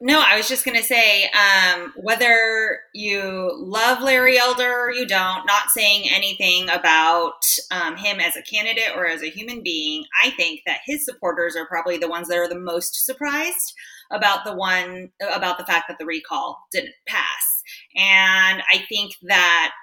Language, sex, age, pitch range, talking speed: English, female, 20-39, 180-255 Hz, 180 wpm